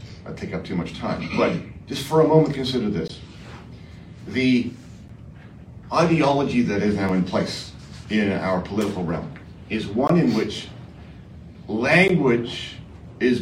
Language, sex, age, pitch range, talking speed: English, male, 50-69, 105-150 Hz, 135 wpm